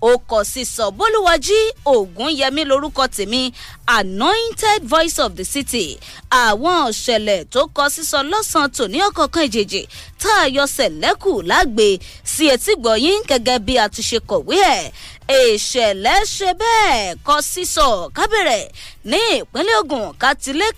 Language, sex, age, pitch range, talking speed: English, female, 20-39, 255-390 Hz, 135 wpm